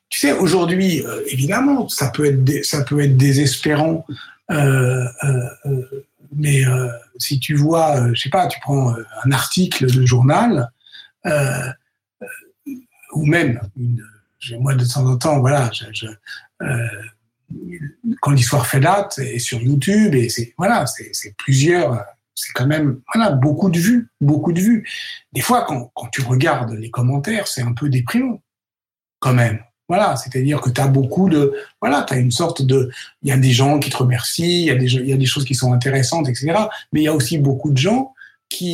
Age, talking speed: 60-79, 195 wpm